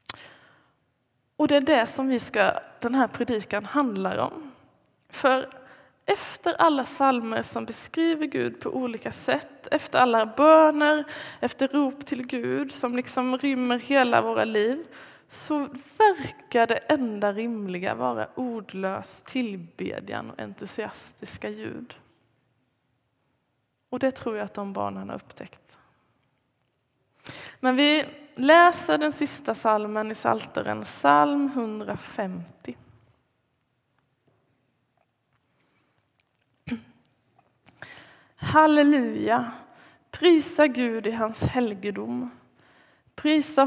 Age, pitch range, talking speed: 20-39, 180-270 Hz, 100 wpm